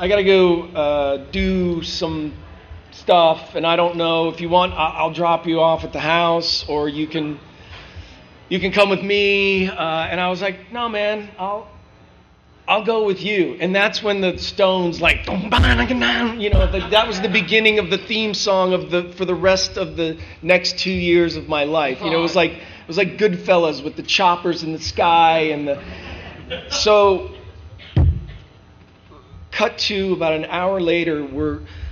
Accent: American